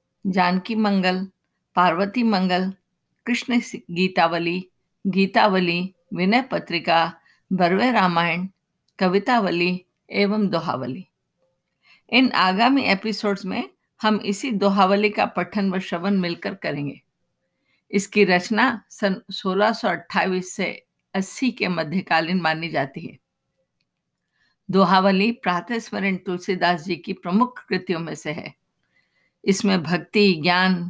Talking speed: 100 wpm